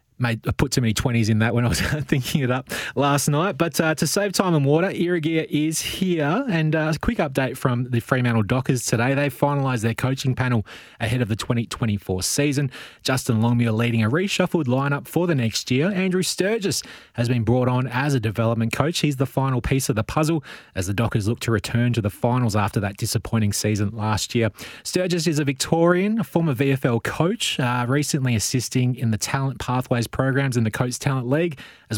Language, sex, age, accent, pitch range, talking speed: English, male, 20-39, Australian, 115-150 Hz, 210 wpm